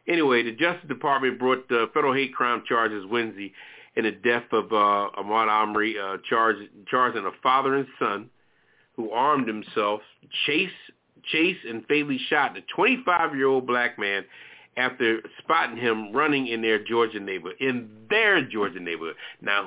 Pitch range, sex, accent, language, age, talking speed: 115-150 Hz, male, American, English, 40-59, 155 wpm